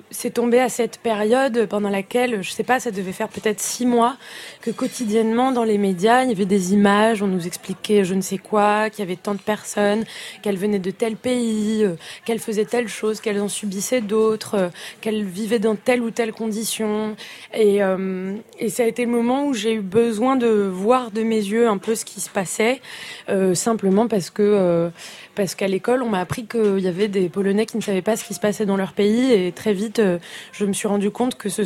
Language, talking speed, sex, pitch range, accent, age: French, 225 wpm, female, 190-225 Hz, French, 20-39